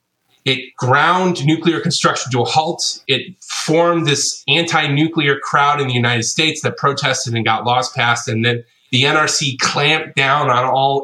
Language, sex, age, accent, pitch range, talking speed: English, male, 20-39, American, 120-150 Hz, 165 wpm